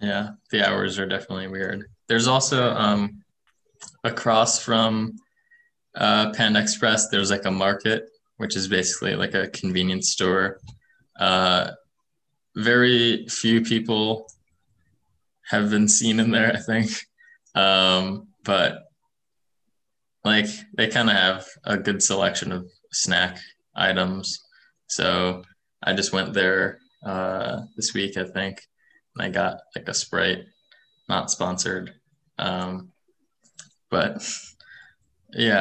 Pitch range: 95-115 Hz